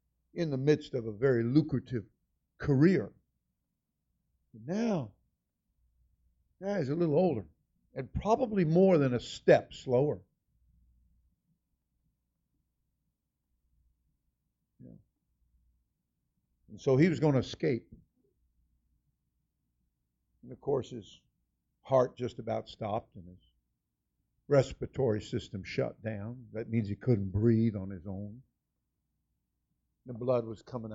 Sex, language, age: male, English, 50-69